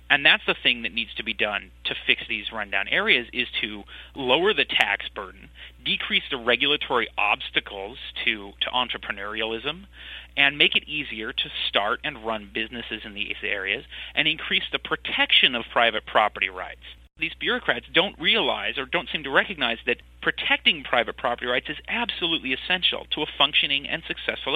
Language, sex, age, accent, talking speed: English, male, 30-49, American, 170 wpm